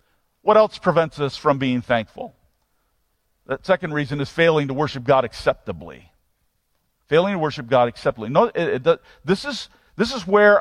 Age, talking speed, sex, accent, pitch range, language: 50-69, 165 wpm, male, American, 125-190 Hz, English